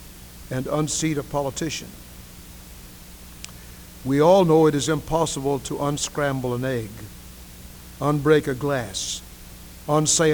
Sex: male